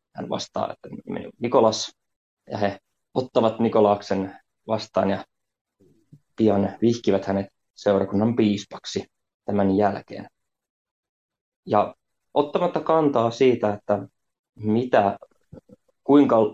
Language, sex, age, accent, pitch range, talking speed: Finnish, male, 20-39, native, 100-115 Hz, 85 wpm